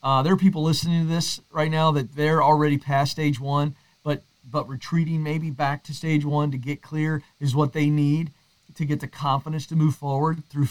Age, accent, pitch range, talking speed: 40-59, American, 140-165 Hz, 215 wpm